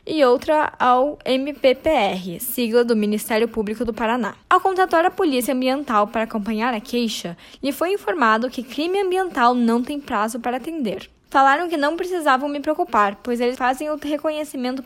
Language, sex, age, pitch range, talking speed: Portuguese, female, 10-29, 225-295 Hz, 165 wpm